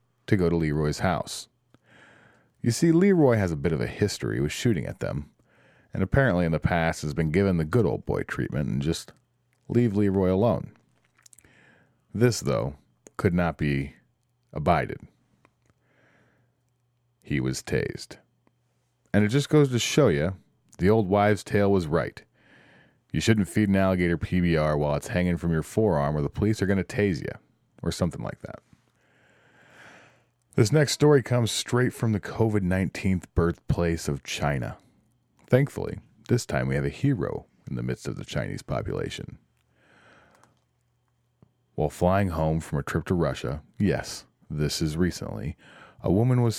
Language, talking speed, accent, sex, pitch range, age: English, 155 wpm, American, male, 85-120 Hz, 40-59